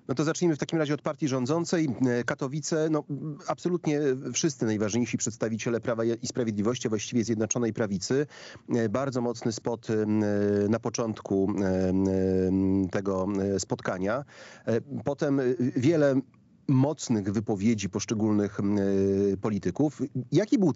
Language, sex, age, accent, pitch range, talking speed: Polish, male, 40-59, native, 105-130 Hz, 105 wpm